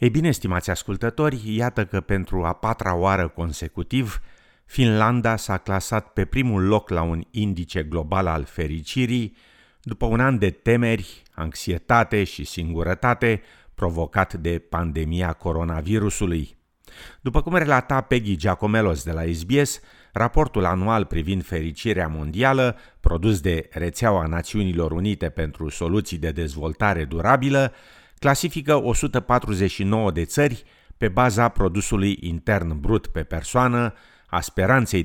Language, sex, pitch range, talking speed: Romanian, male, 85-115 Hz, 120 wpm